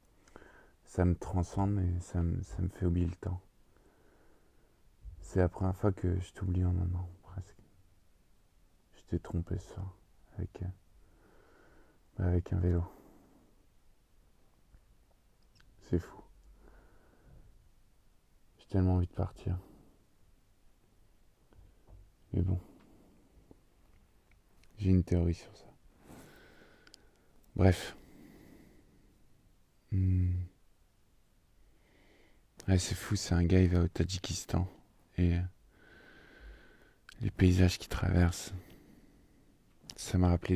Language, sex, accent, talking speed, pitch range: French, male, French, 95 wpm, 85-95 Hz